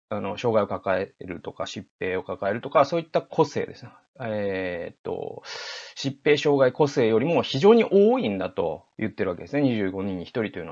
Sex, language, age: male, Japanese, 30-49